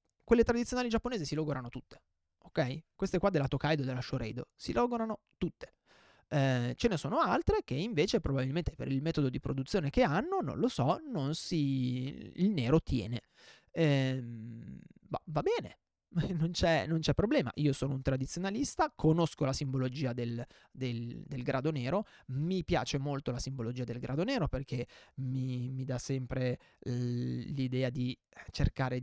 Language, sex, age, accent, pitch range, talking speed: Italian, male, 20-39, native, 130-165 Hz, 155 wpm